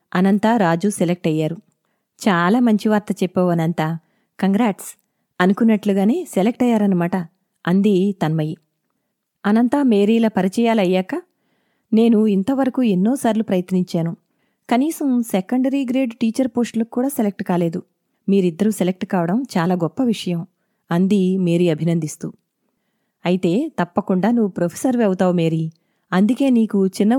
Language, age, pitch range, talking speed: Telugu, 30-49, 185-235 Hz, 105 wpm